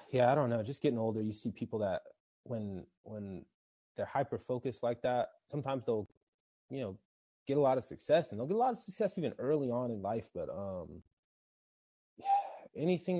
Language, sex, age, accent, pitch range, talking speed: English, male, 20-39, American, 90-115 Hz, 190 wpm